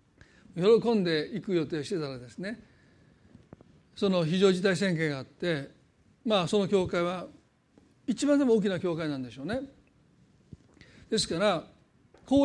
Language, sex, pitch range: Japanese, male, 170-225 Hz